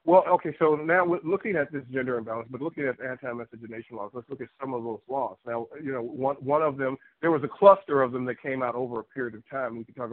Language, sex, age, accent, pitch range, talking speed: English, male, 50-69, American, 120-150 Hz, 265 wpm